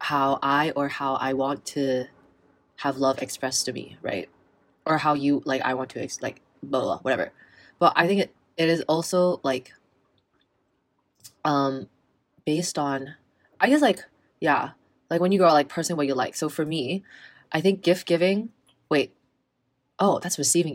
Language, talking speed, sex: English, 175 wpm, female